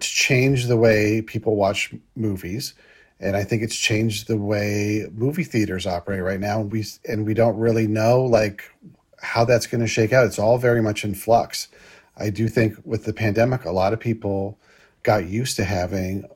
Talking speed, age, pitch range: 190 wpm, 40-59, 100-115 Hz